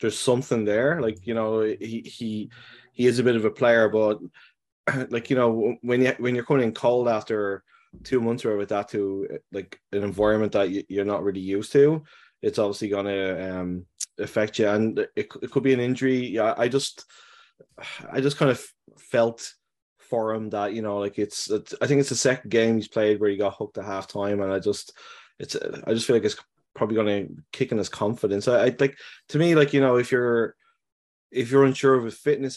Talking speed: 215 wpm